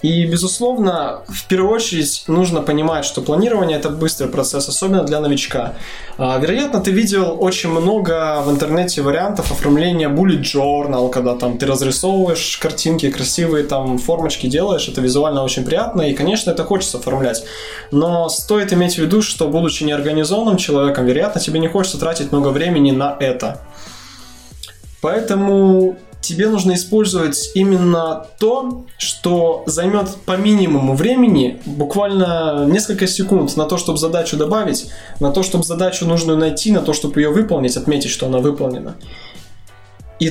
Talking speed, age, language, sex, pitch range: 145 wpm, 20-39, Russian, male, 145-190 Hz